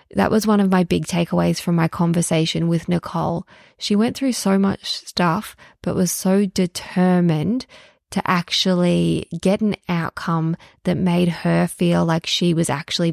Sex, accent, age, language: female, Australian, 20-39, English